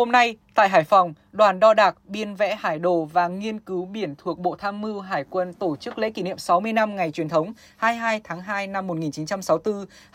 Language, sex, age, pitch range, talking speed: Vietnamese, female, 10-29, 175-215 Hz, 220 wpm